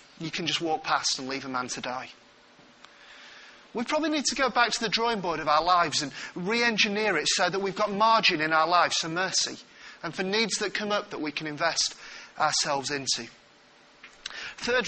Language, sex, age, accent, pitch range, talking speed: English, male, 30-49, British, 170-270 Hz, 200 wpm